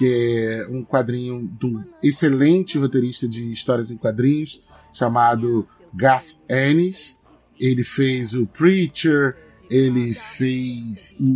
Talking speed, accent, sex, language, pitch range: 105 wpm, Brazilian, male, Portuguese, 125-175 Hz